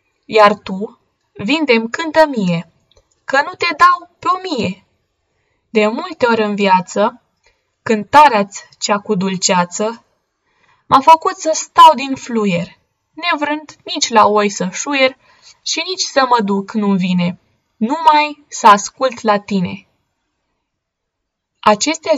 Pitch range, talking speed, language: 195-260 Hz, 125 wpm, Romanian